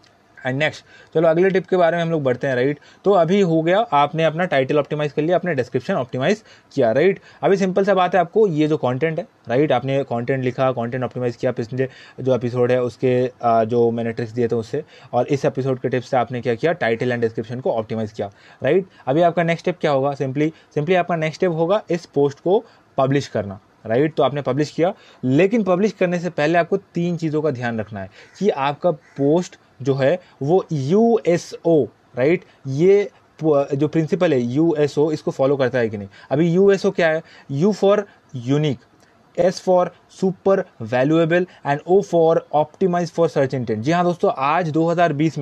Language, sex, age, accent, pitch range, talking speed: Hindi, male, 20-39, native, 125-175 Hz, 210 wpm